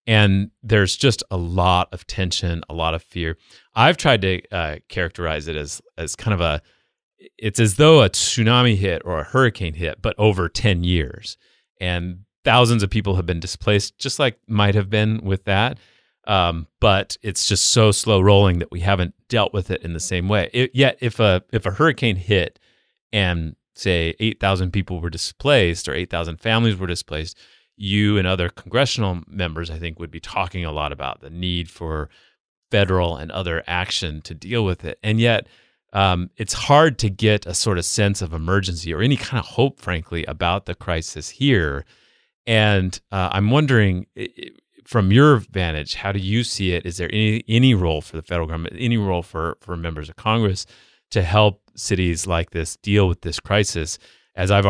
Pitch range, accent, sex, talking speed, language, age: 85-110 Hz, American, male, 190 wpm, English, 30-49